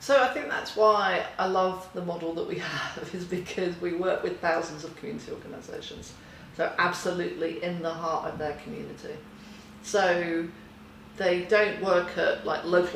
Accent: British